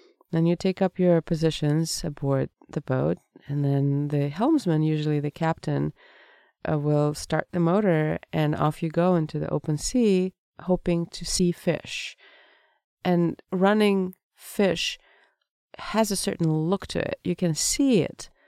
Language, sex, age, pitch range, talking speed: English, female, 30-49, 150-180 Hz, 150 wpm